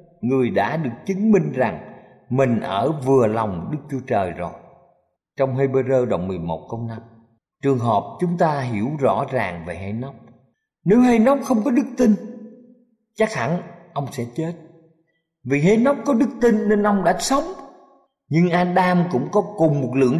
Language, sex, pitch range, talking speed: Vietnamese, male, 130-205 Hz, 175 wpm